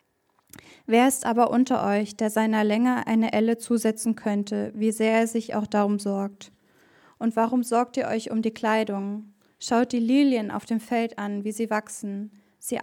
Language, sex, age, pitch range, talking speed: German, female, 10-29, 215-240 Hz, 180 wpm